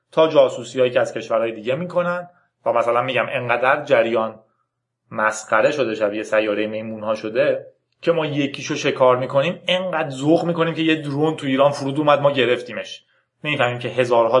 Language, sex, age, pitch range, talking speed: Persian, male, 30-49, 120-145 Hz, 165 wpm